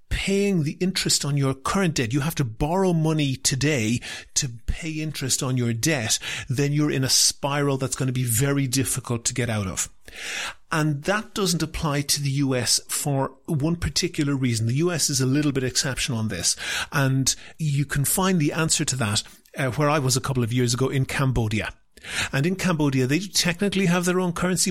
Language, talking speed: English, 200 wpm